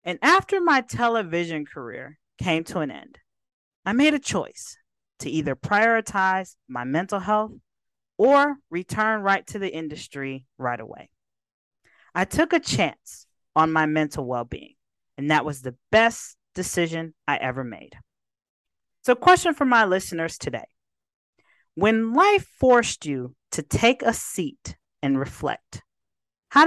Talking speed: 135 wpm